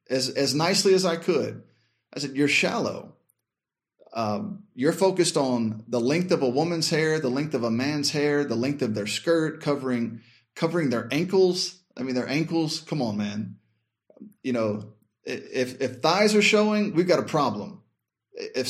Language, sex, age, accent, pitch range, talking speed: English, male, 30-49, American, 125-180 Hz, 175 wpm